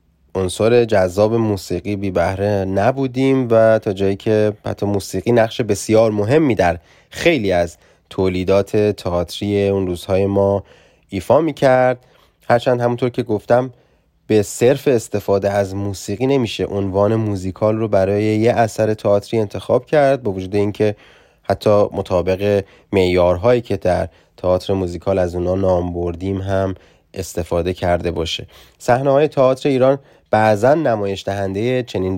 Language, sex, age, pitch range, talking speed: Persian, male, 20-39, 95-115 Hz, 130 wpm